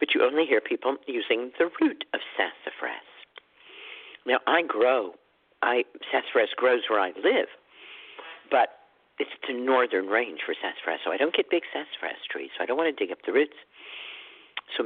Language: English